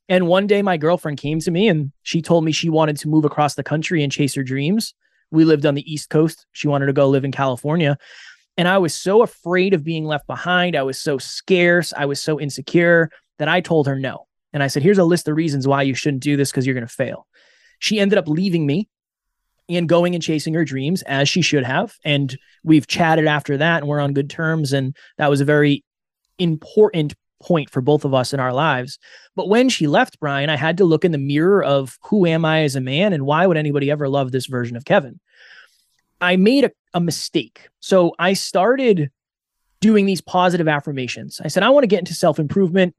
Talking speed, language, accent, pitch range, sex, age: 230 wpm, English, American, 140-180 Hz, male, 20-39